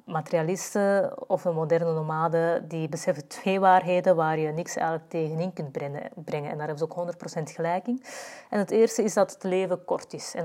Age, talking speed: 20-39, 190 wpm